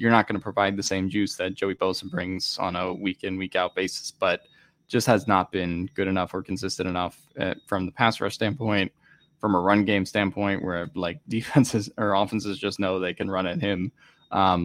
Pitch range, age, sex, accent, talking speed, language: 95-105 Hz, 10-29, male, American, 215 wpm, English